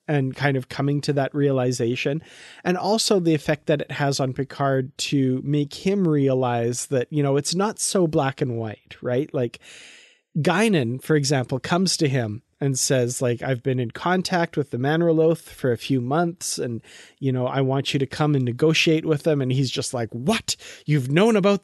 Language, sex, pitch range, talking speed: English, male, 130-155 Hz, 195 wpm